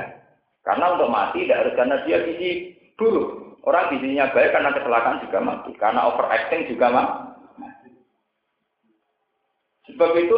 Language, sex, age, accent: Indonesian, male, 40-59, native